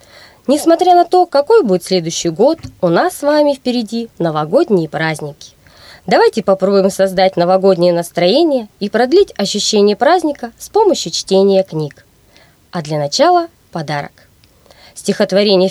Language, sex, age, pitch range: Russian, female, 20-39, 180-295 Hz